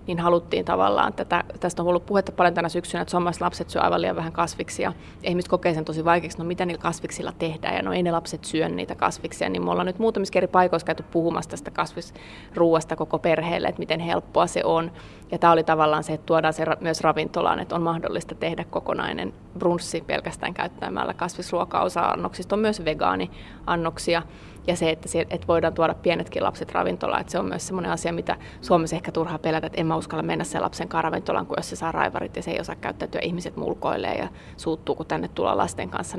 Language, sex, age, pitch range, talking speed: Finnish, female, 30-49, 160-180 Hz, 200 wpm